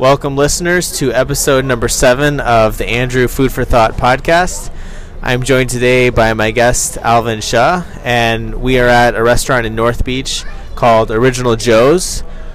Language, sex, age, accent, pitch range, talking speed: English, male, 20-39, American, 110-125 Hz, 160 wpm